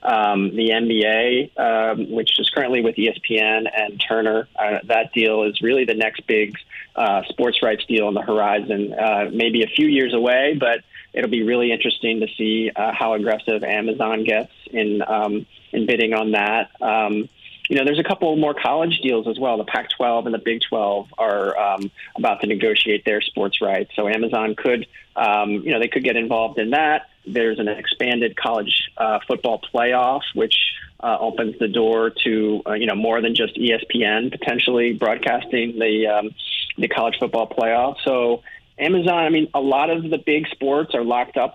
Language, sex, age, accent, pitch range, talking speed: English, male, 20-39, American, 110-120 Hz, 185 wpm